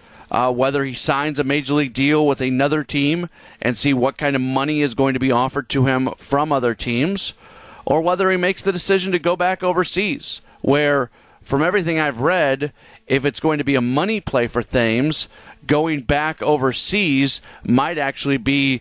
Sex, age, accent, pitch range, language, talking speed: male, 40-59, American, 130-160 Hz, English, 185 wpm